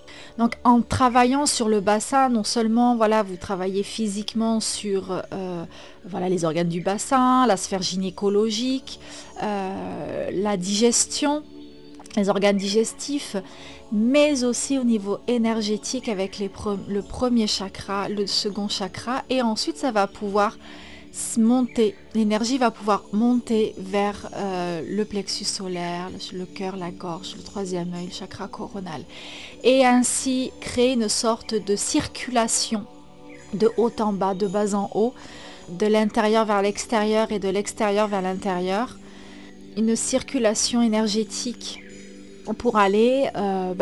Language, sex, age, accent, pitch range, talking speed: French, female, 30-49, French, 190-235 Hz, 125 wpm